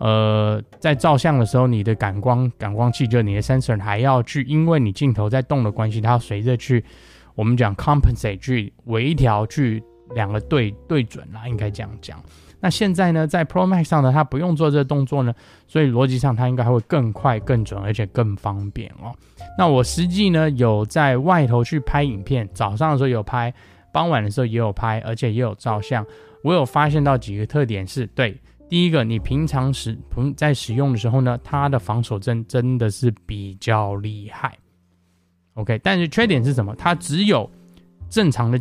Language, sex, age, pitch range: Chinese, male, 20-39, 105-135 Hz